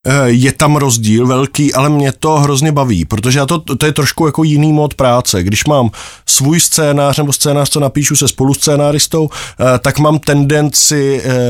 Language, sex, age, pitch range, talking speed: Czech, male, 20-39, 130-145 Hz, 170 wpm